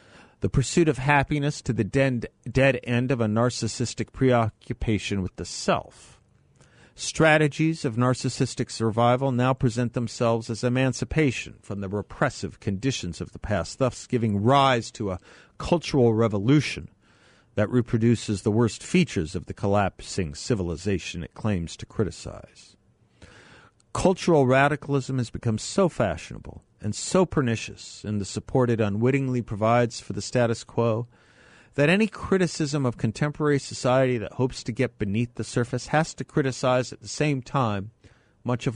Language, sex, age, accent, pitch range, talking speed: English, male, 50-69, American, 105-130 Hz, 140 wpm